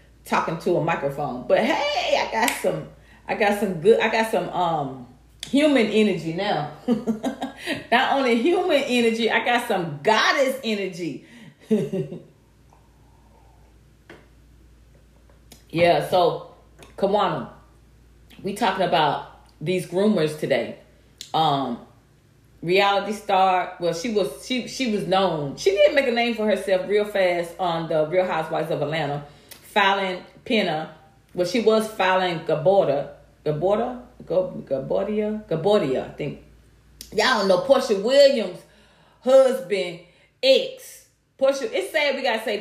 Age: 30-49